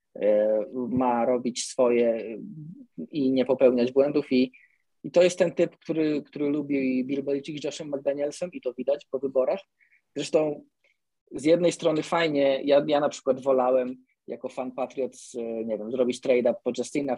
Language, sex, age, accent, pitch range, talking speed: Polish, male, 20-39, native, 125-150 Hz, 155 wpm